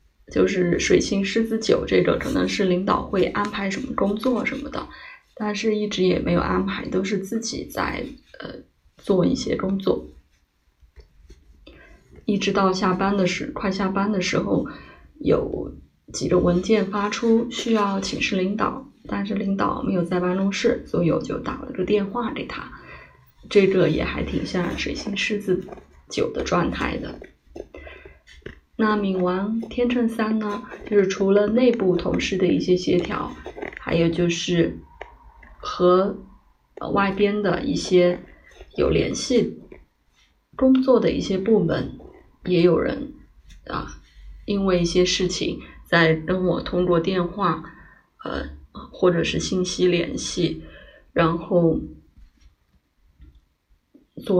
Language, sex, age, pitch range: Chinese, female, 20-39, 170-210 Hz